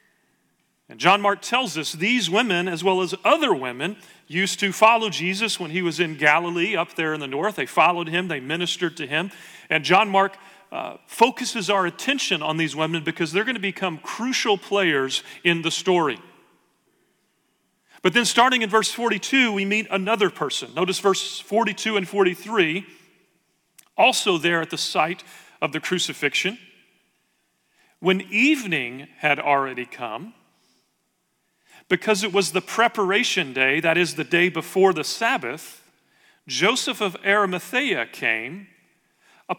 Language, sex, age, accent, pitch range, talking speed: English, male, 40-59, American, 165-215 Hz, 150 wpm